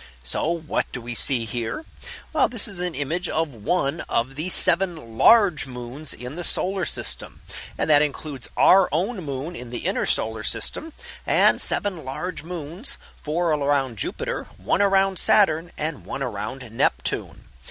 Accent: American